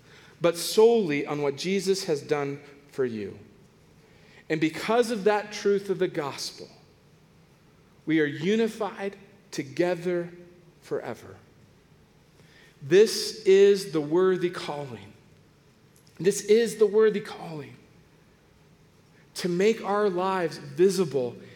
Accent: American